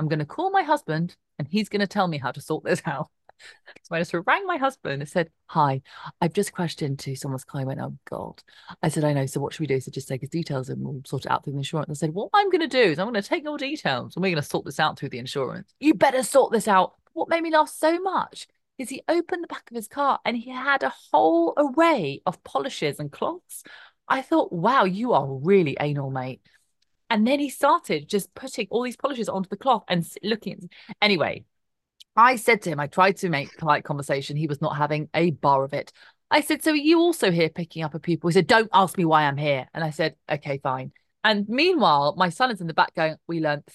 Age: 30-49